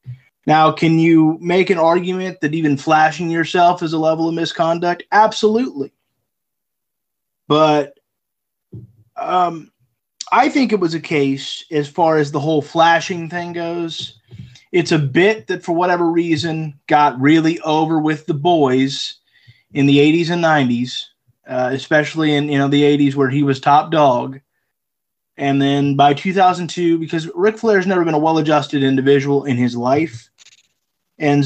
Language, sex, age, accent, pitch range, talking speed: English, male, 20-39, American, 140-175 Hz, 150 wpm